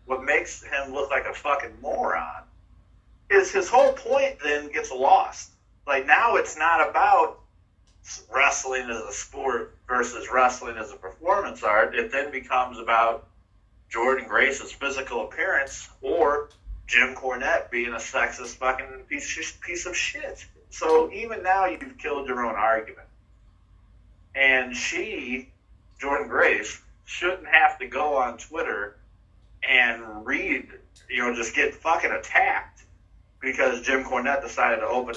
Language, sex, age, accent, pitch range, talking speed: English, male, 50-69, American, 95-130 Hz, 135 wpm